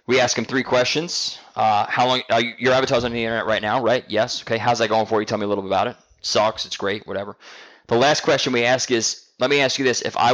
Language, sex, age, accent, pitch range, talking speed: English, male, 20-39, American, 105-130 Hz, 290 wpm